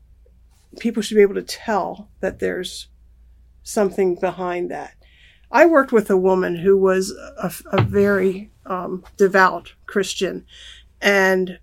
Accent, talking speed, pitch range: American, 130 wpm, 185-215 Hz